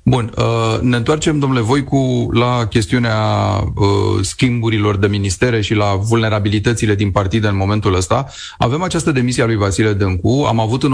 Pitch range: 105-130 Hz